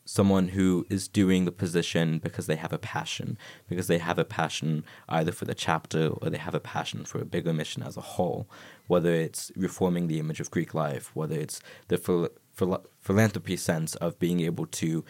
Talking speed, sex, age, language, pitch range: 195 wpm, male, 20-39, English, 85-105 Hz